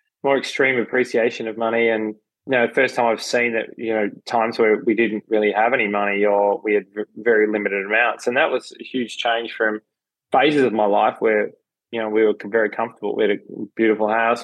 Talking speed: 215 wpm